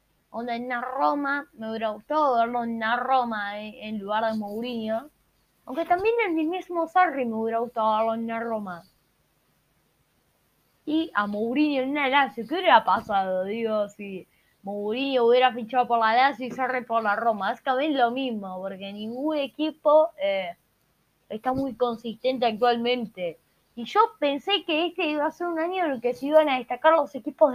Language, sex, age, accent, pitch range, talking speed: Spanish, female, 20-39, Argentinian, 220-295 Hz, 185 wpm